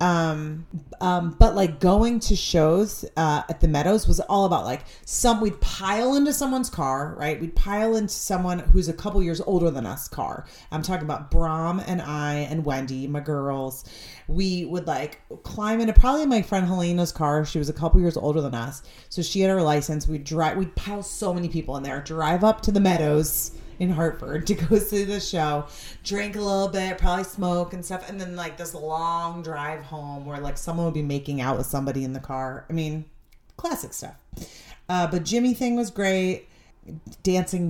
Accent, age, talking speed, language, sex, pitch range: American, 30-49, 200 wpm, English, female, 150-195 Hz